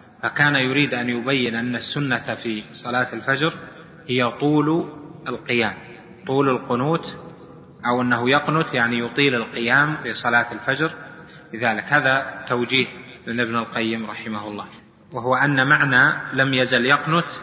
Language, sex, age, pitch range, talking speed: Arabic, male, 30-49, 120-145 Hz, 125 wpm